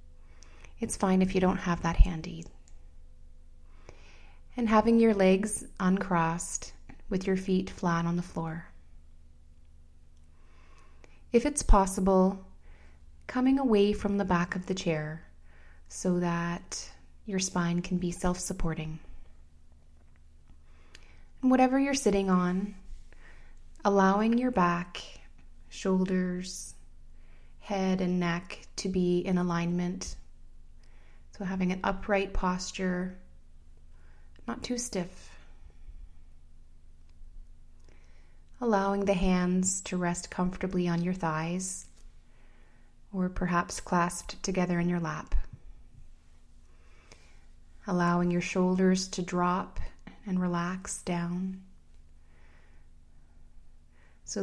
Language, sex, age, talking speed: English, female, 20-39, 95 wpm